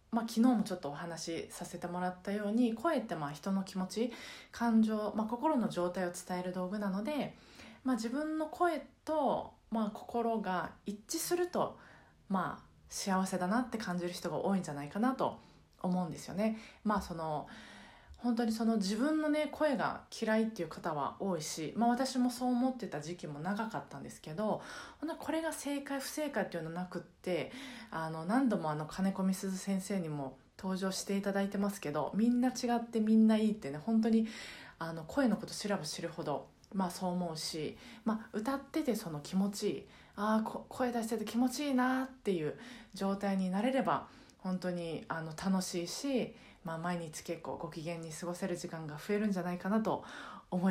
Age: 20-39